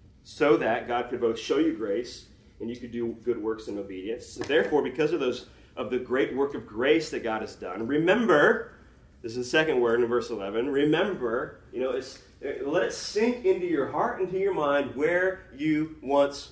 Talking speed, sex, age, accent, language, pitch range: 205 wpm, male, 30-49, American, English, 105-175 Hz